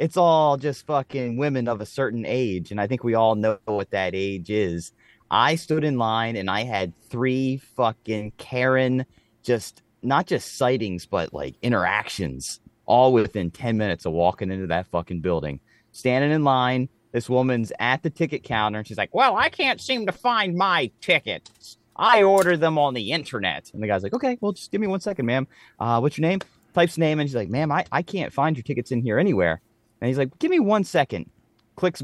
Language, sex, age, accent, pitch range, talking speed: English, male, 30-49, American, 110-155 Hz, 205 wpm